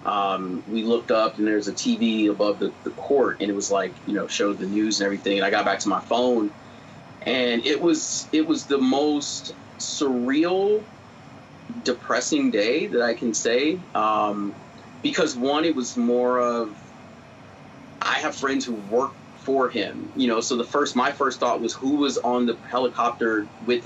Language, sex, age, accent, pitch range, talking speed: English, male, 30-49, American, 105-135 Hz, 185 wpm